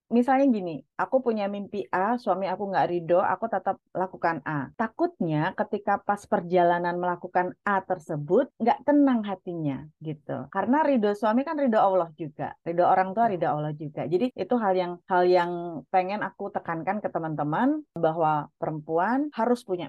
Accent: native